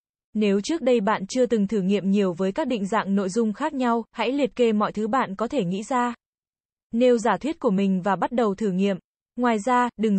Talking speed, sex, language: 235 wpm, female, Vietnamese